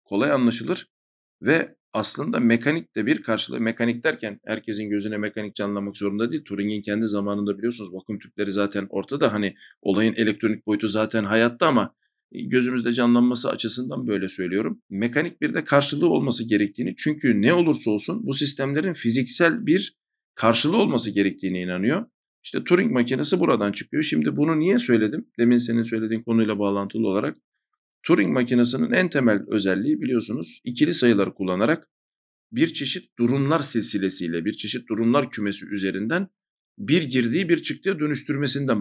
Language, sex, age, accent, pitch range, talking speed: Turkish, male, 50-69, native, 105-140 Hz, 140 wpm